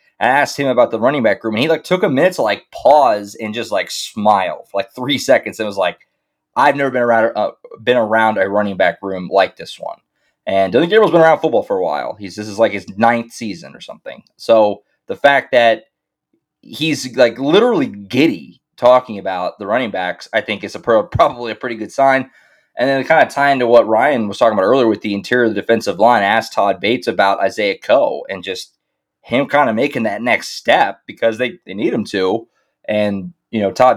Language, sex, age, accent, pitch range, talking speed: English, male, 20-39, American, 95-120 Hz, 230 wpm